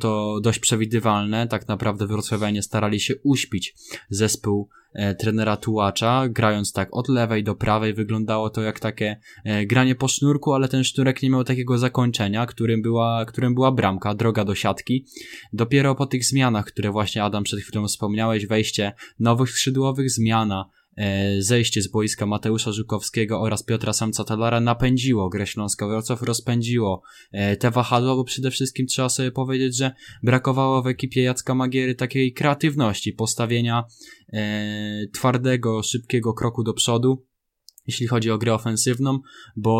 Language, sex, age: Polish, male, 10-29